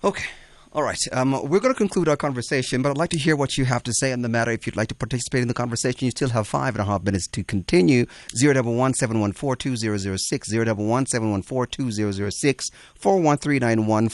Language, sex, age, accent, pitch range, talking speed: English, male, 30-49, American, 105-135 Hz, 175 wpm